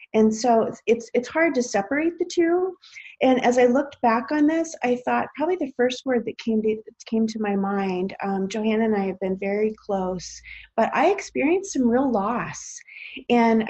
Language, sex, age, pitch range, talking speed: English, female, 30-49, 205-250 Hz, 195 wpm